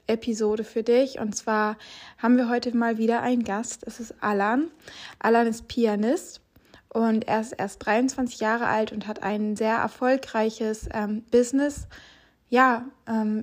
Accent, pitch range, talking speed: German, 225-245 Hz, 150 wpm